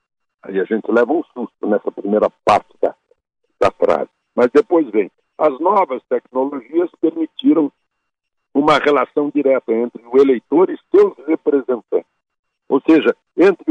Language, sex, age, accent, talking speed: Portuguese, male, 60-79, Brazilian, 135 wpm